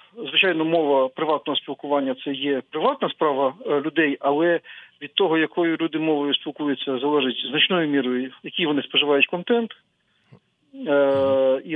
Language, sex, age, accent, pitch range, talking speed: Ukrainian, male, 40-59, native, 145-185 Hz, 130 wpm